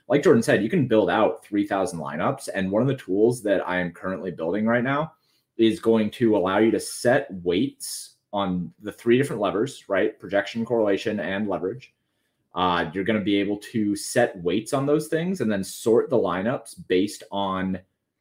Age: 30-49